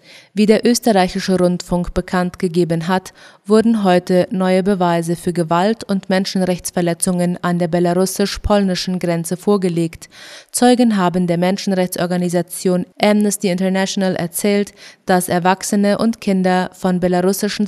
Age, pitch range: 20-39, 180-205 Hz